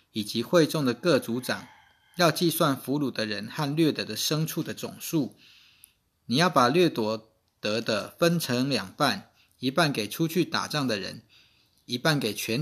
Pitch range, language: 115-160 Hz, Chinese